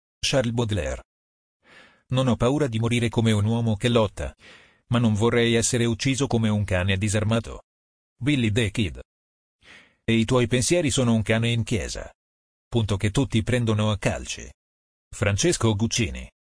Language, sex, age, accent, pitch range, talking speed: Italian, male, 40-59, native, 95-120 Hz, 150 wpm